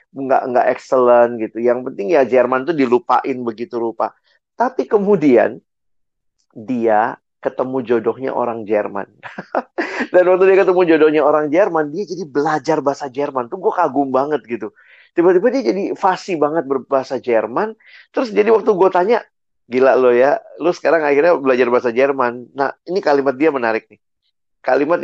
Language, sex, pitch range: Indonesian, male, 120-165 Hz